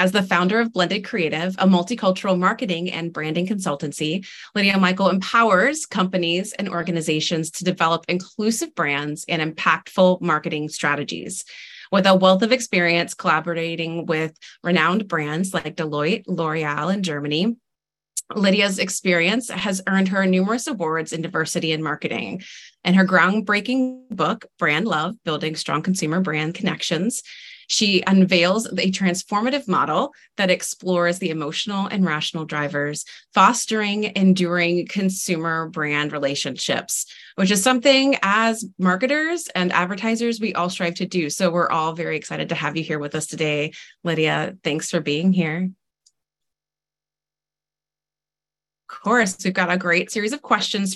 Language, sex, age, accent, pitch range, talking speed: English, female, 30-49, American, 160-195 Hz, 140 wpm